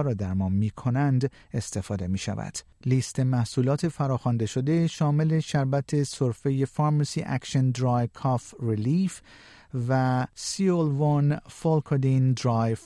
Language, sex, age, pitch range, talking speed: Persian, male, 50-69, 115-140 Hz, 105 wpm